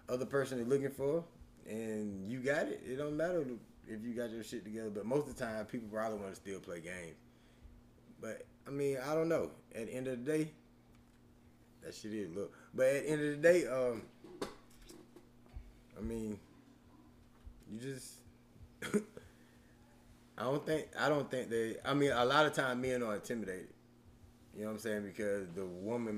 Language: English